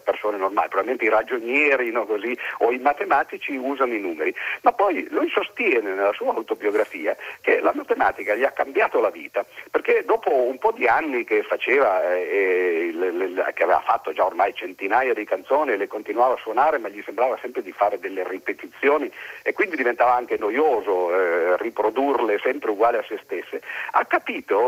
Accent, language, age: native, Italian, 50-69